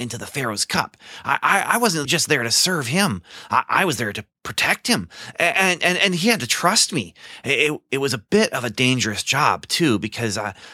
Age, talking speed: 30-49, 225 wpm